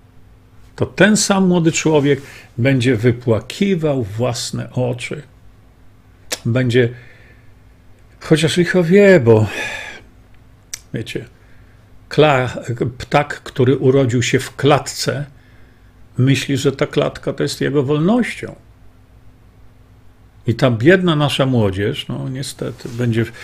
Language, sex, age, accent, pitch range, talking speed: Polish, male, 50-69, native, 115-160 Hz, 95 wpm